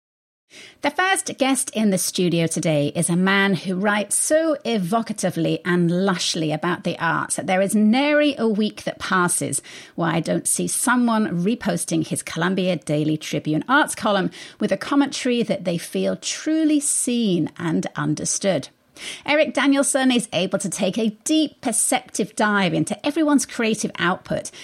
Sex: female